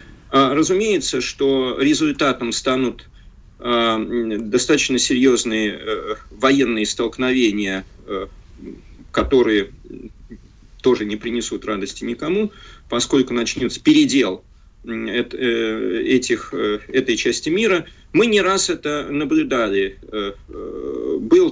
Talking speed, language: 75 wpm, Russian